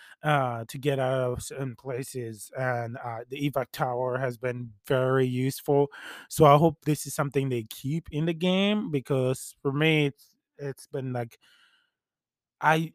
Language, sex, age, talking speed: English, male, 20-39, 160 wpm